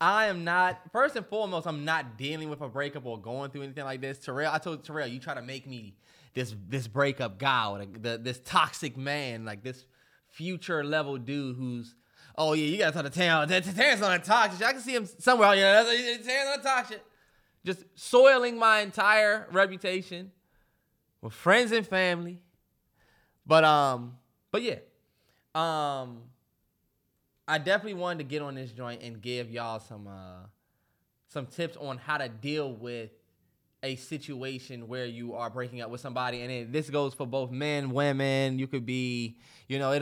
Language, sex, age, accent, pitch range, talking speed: English, male, 20-39, American, 125-170 Hz, 180 wpm